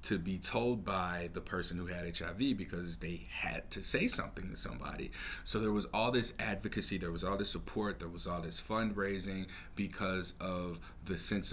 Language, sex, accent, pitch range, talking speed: English, male, American, 85-100 Hz, 195 wpm